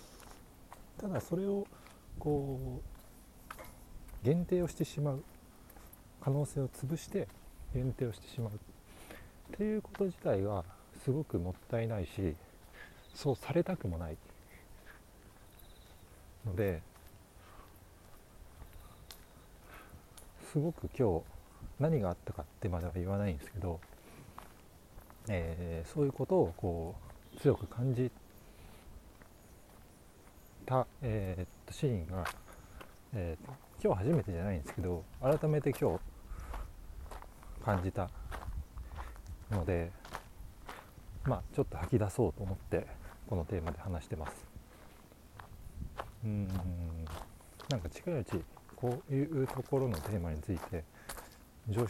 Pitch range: 85-115 Hz